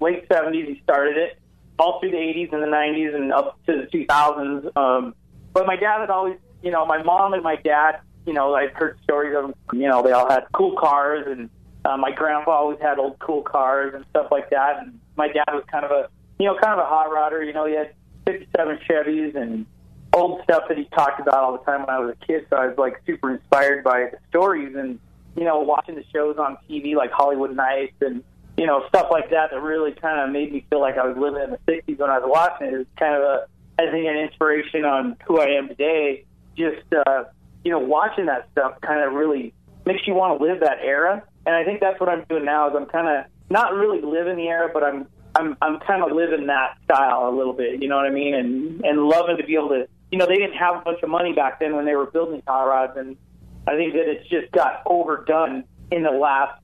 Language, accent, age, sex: English, American, 30-49, male